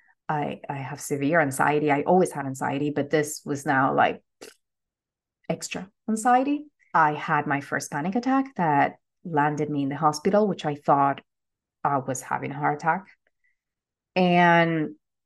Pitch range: 150-185 Hz